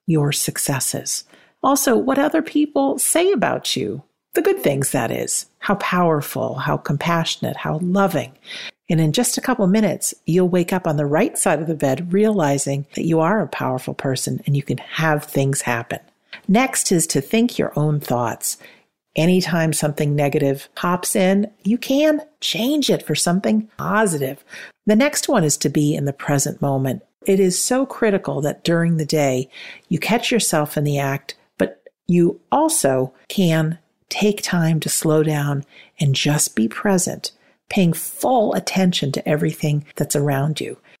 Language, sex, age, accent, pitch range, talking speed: English, female, 50-69, American, 150-205 Hz, 165 wpm